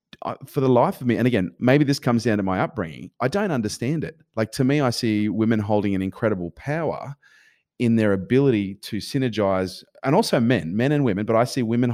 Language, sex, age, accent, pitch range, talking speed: English, male, 30-49, Australian, 95-115 Hz, 215 wpm